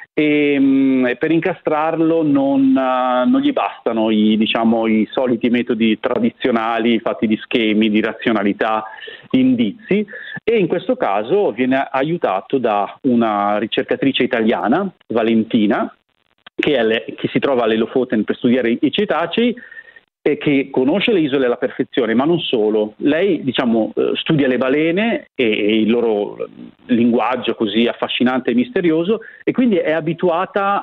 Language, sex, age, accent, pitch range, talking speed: Italian, male, 40-59, native, 115-170 Hz, 130 wpm